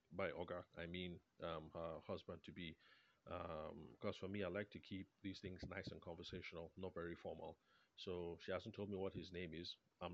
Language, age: English, 30-49